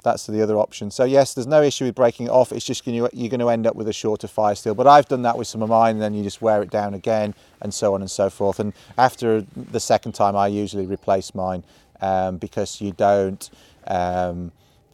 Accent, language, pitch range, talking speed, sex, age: British, English, 105-140 Hz, 255 wpm, male, 30-49